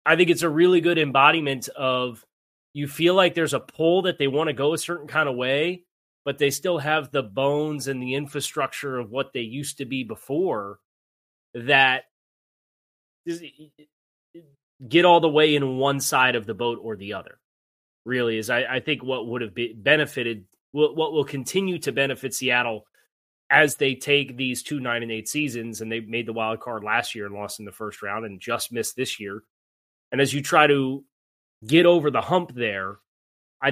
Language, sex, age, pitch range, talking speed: English, male, 30-49, 120-150 Hz, 190 wpm